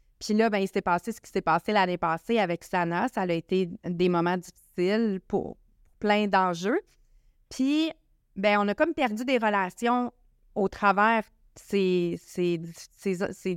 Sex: female